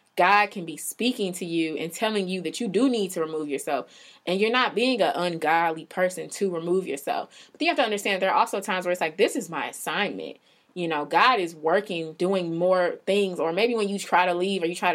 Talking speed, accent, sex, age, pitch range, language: 240 wpm, American, female, 20-39, 165-210 Hz, English